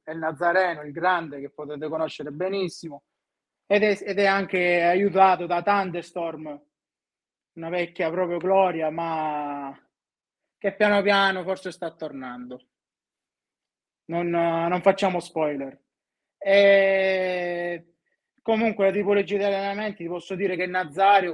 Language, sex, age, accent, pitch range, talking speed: Italian, male, 30-49, native, 165-195 Hz, 120 wpm